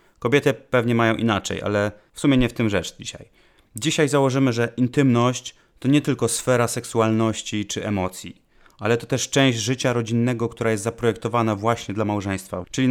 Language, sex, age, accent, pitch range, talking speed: Polish, male, 30-49, native, 105-125 Hz, 165 wpm